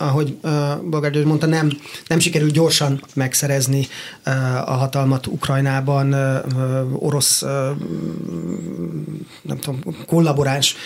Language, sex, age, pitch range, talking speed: Hungarian, male, 30-49, 140-155 Hz, 105 wpm